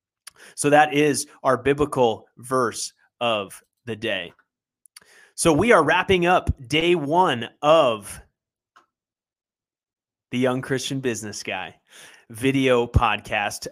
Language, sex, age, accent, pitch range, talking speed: English, male, 30-49, American, 130-155 Hz, 105 wpm